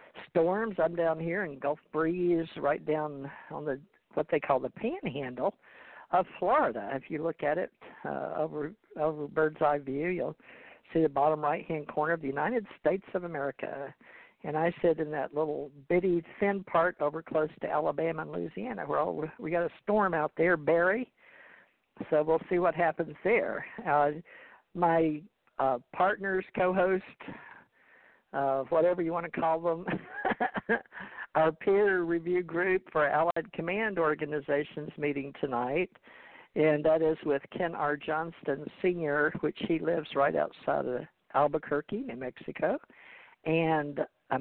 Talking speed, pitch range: 155 wpm, 150-175 Hz